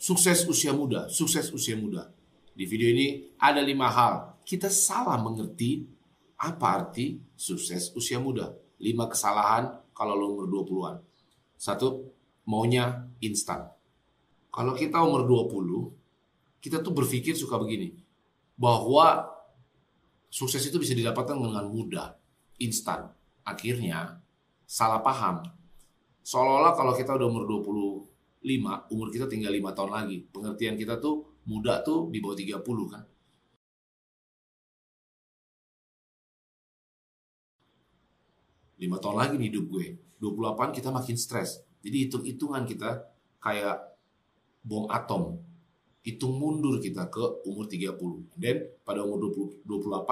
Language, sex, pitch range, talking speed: Indonesian, male, 105-140 Hz, 115 wpm